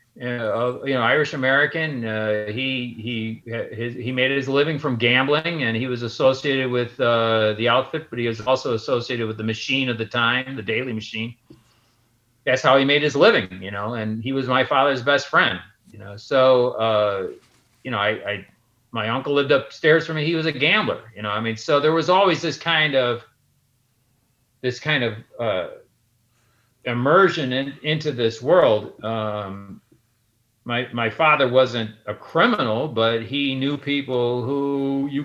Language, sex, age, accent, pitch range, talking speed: English, male, 40-59, American, 115-135 Hz, 180 wpm